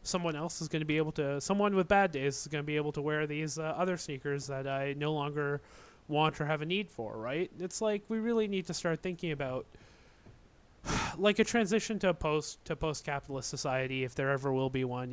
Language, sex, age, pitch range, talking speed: English, male, 30-49, 130-155 Hz, 235 wpm